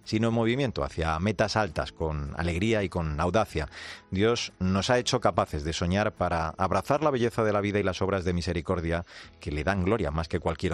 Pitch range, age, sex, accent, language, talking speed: 85-110 Hz, 40-59, male, Spanish, Spanish, 205 wpm